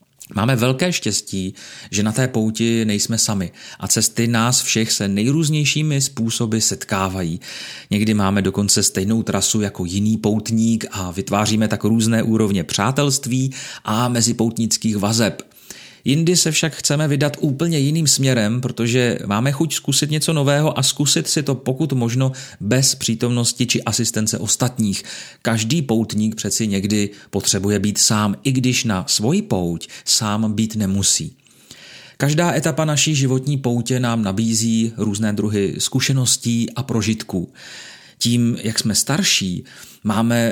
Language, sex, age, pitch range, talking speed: Czech, male, 30-49, 105-135 Hz, 135 wpm